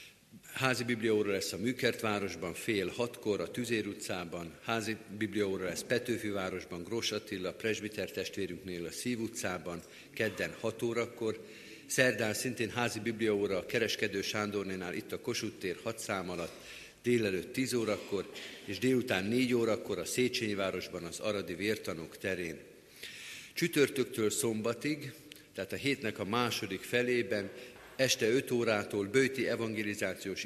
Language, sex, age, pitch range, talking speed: Hungarian, male, 50-69, 95-120 Hz, 125 wpm